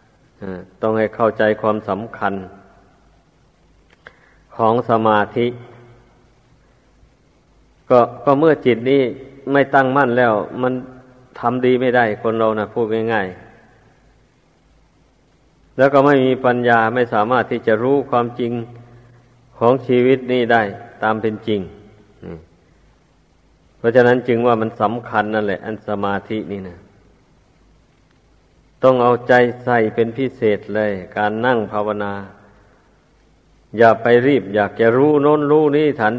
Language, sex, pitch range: Thai, male, 110-125 Hz